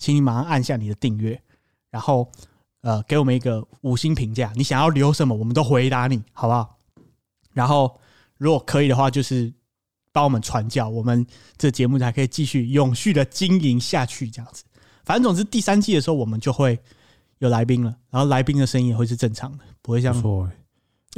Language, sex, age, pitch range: Chinese, male, 20-39, 115-140 Hz